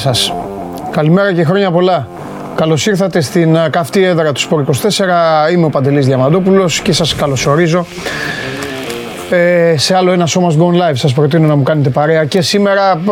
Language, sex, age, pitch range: Greek, male, 30-49, 140-175 Hz